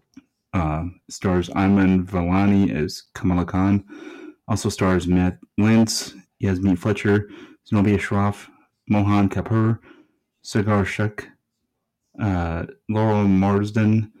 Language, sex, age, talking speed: English, male, 30-49, 95 wpm